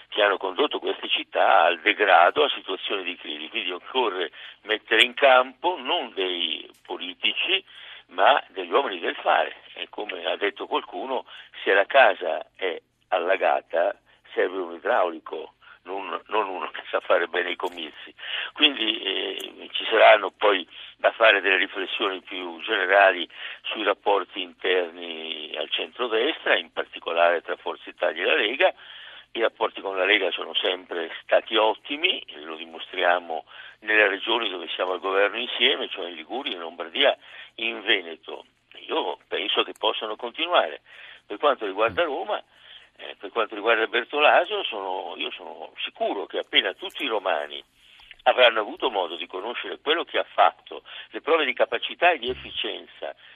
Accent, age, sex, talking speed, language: native, 60-79, male, 150 wpm, Italian